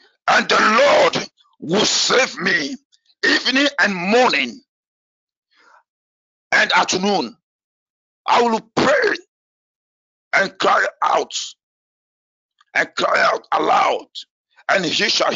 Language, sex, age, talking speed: English, male, 50-69, 100 wpm